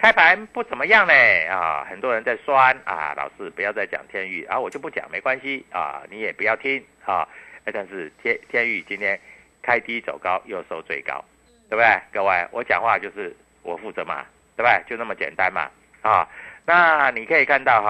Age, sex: 50-69, male